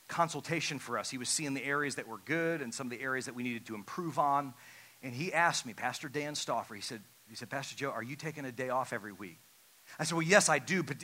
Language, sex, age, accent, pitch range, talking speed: English, male, 40-59, American, 120-175 Hz, 270 wpm